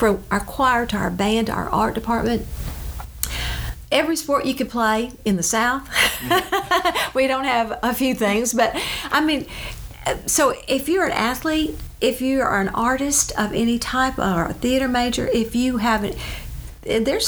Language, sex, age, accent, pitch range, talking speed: English, female, 50-69, American, 200-275 Hz, 165 wpm